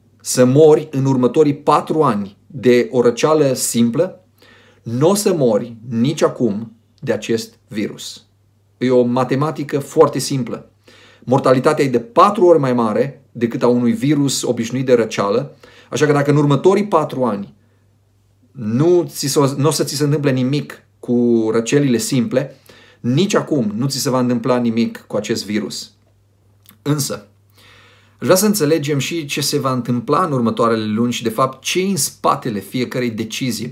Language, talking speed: Romanian, 160 wpm